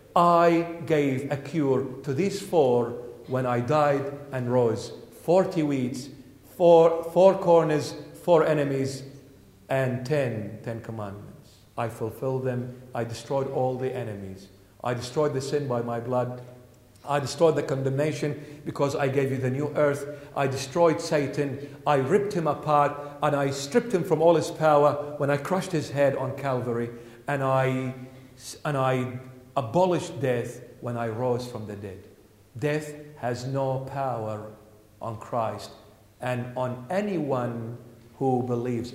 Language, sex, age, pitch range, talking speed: English, male, 50-69, 125-200 Hz, 145 wpm